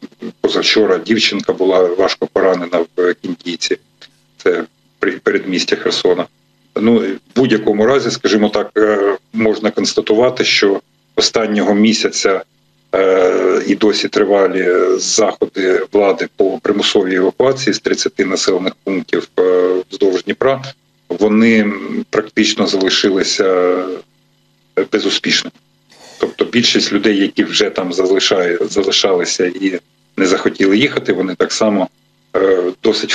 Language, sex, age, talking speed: Ukrainian, male, 50-69, 95 wpm